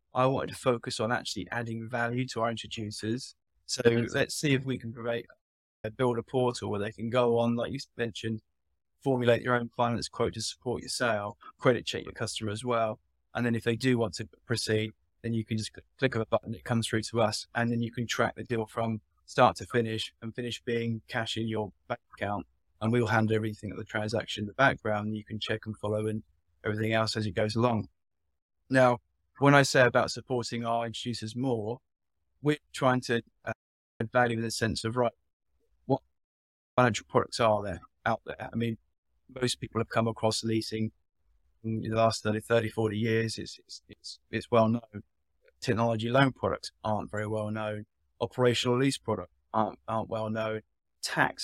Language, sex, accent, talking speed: English, male, British, 195 wpm